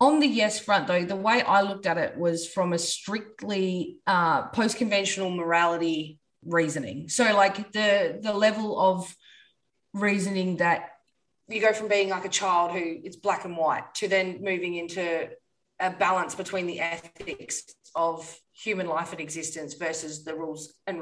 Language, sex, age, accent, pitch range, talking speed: English, female, 30-49, Australian, 165-210 Hz, 165 wpm